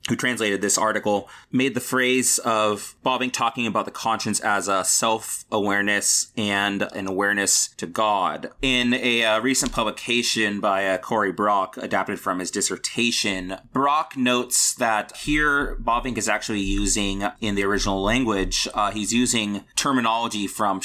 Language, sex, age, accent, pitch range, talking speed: English, male, 30-49, American, 100-120 Hz, 145 wpm